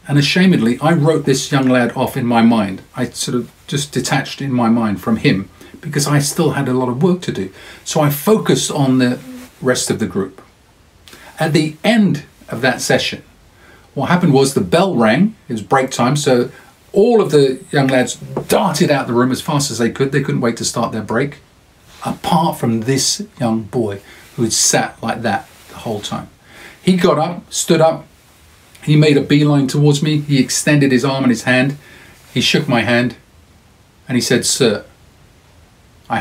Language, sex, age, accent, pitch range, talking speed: English, male, 40-59, British, 105-145 Hz, 195 wpm